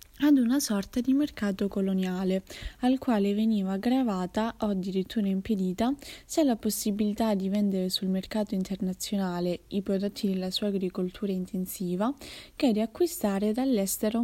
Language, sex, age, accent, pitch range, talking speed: Italian, female, 20-39, native, 190-240 Hz, 130 wpm